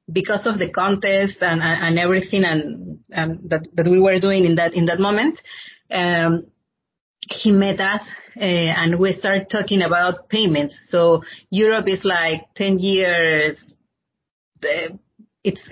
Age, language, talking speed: 30-49, English, 145 wpm